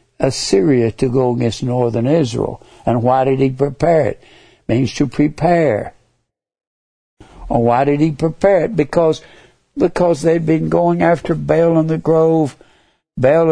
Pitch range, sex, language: 120-155 Hz, male, English